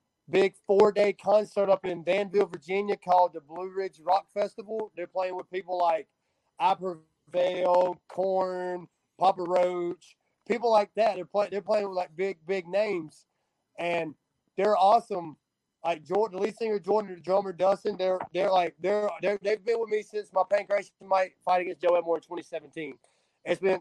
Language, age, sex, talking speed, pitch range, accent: English, 20-39, male, 165 wpm, 180-205 Hz, American